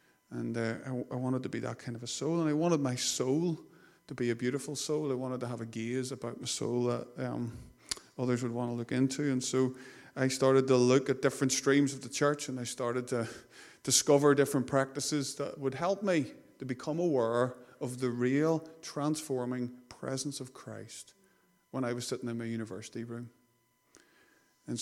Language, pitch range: English, 115-130 Hz